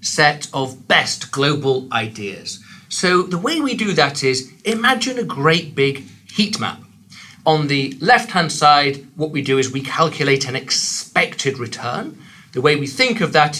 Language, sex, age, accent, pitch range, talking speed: English, male, 40-59, British, 135-185 Hz, 165 wpm